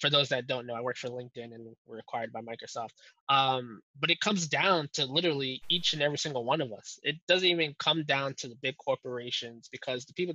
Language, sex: English, male